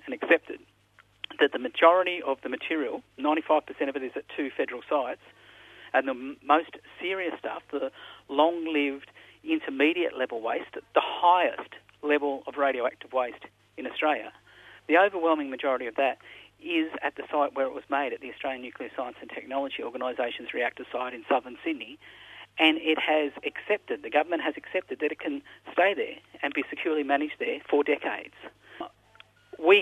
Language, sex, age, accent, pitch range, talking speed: English, male, 50-69, Australian, 135-190 Hz, 160 wpm